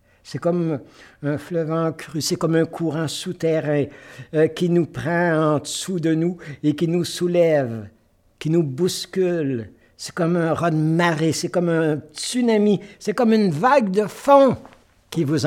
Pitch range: 110-160 Hz